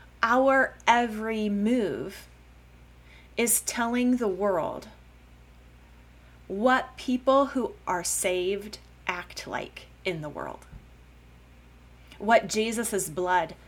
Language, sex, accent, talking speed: English, female, American, 90 wpm